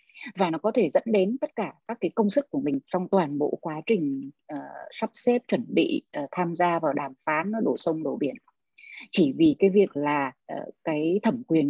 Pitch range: 165-245 Hz